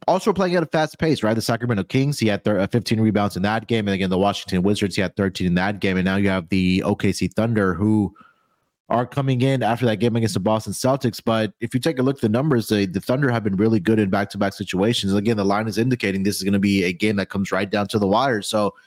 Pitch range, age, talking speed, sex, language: 100-120 Hz, 30-49, 280 wpm, male, English